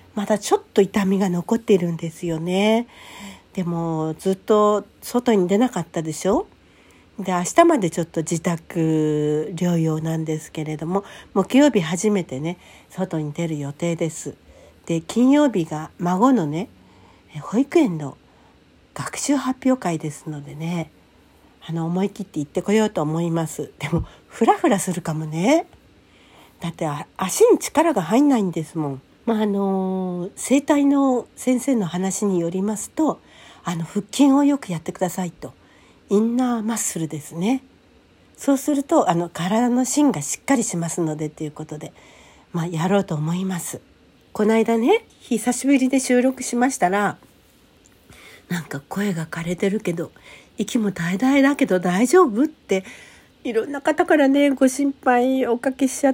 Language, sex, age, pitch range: Japanese, female, 60-79, 165-260 Hz